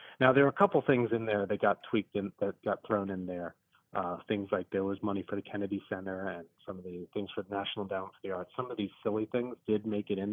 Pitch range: 100-125 Hz